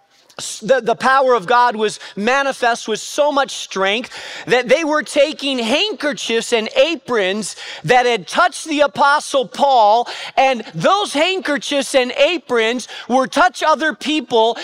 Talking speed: 135 wpm